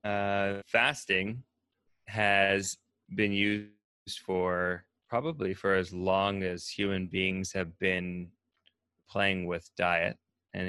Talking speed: 105 wpm